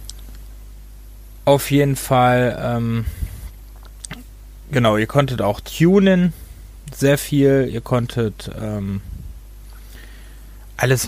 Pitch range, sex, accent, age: 105-135 Hz, male, German, 30-49